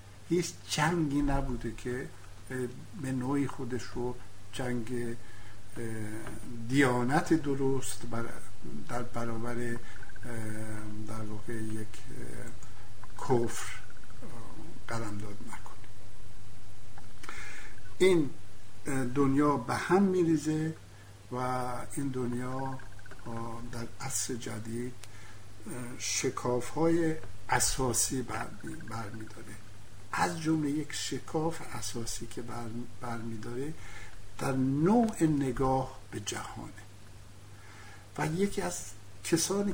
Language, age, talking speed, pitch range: English, 60-79, 75 wpm, 105-130 Hz